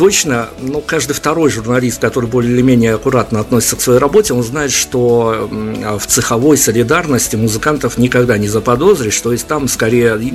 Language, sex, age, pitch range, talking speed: Russian, male, 50-69, 115-135 Hz, 170 wpm